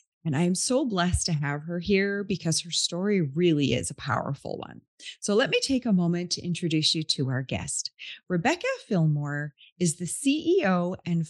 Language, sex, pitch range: English, female, 150-215 Hz